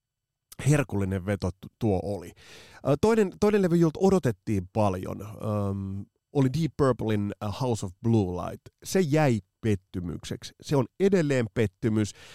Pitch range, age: 100-140 Hz, 30-49